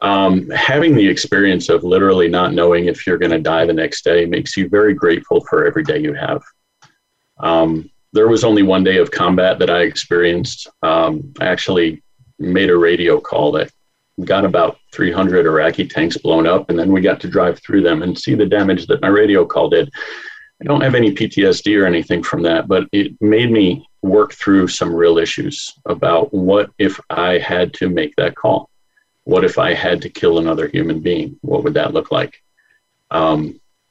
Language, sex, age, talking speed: English, male, 40-59, 195 wpm